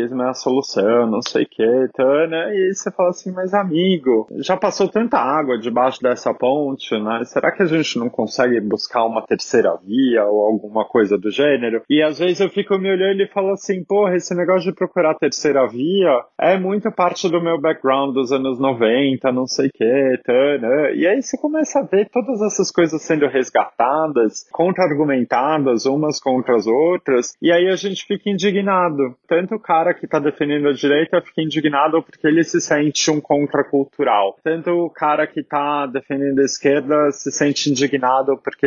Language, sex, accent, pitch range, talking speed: Portuguese, male, Brazilian, 135-175 Hz, 185 wpm